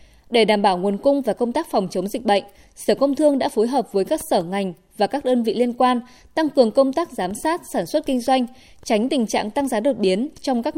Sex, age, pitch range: female, 20-39, 205-270 Hz